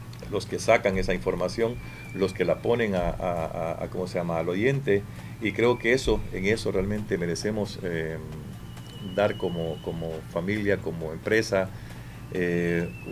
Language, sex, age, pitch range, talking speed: Spanish, male, 50-69, 90-110 Hz, 160 wpm